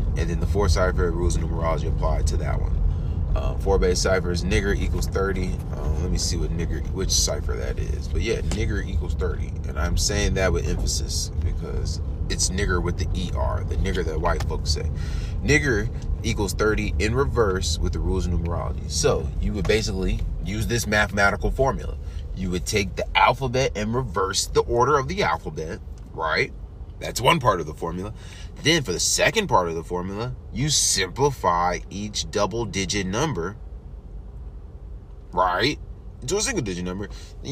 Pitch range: 80-100 Hz